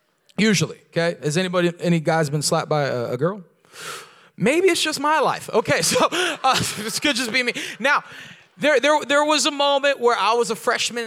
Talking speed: 200 wpm